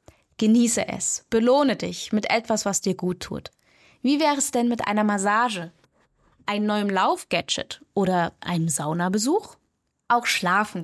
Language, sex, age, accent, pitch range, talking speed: German, female, 20-39, German, 180-230 Hz, 140 wpm